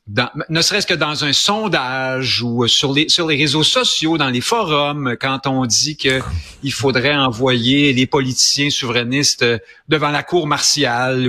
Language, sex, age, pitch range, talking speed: French, male, 50-69, 125-175 Hz, 165 wpm